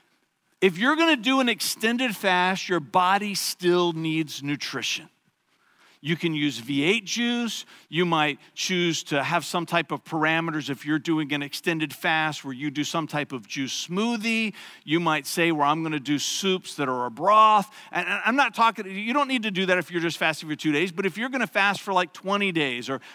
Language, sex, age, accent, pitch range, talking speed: English, male, 50-69, American, 160-220 Hz, 230 wpm